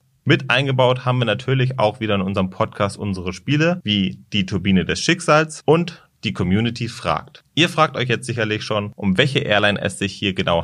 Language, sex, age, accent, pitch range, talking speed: German, male, 30-49, German, 105-145 Hz, 190 wpm